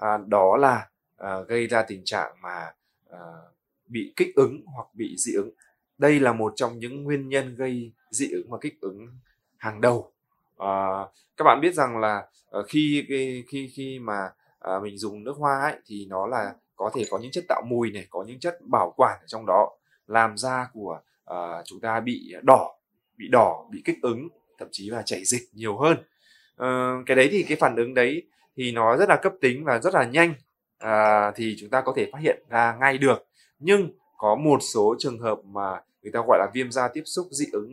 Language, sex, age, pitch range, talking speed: Vietnamese, male, 20-39, 110-155 Hz, 215 wpm